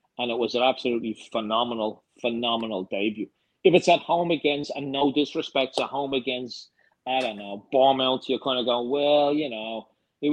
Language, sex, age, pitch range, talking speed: English, male, 30-49, 110-130 Hz, 180 wpm